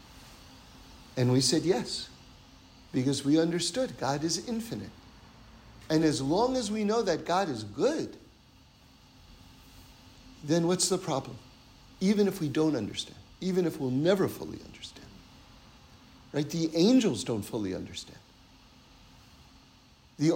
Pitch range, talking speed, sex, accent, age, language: 120-185 Hz, 125 wpm, male, American, 50-69, English